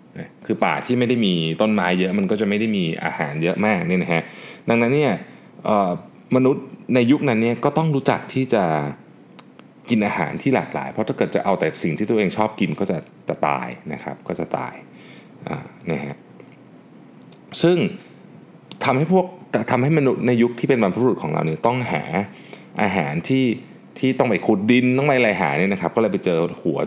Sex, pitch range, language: male, 85-130 Hz, Thai